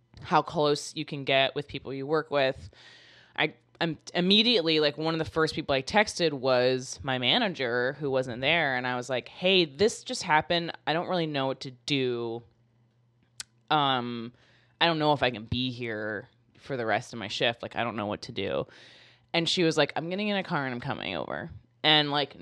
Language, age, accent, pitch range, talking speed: English, 20-39, American, 120-160 Hz, 210 wpm